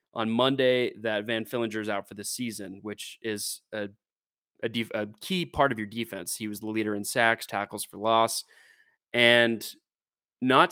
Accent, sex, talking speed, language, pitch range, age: American, male, 180 wpm, English, 110-130 Hz, 20-39